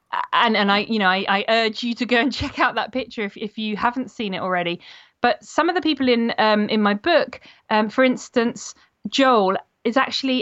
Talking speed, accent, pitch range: 225 wpm, British, 195-245 Hz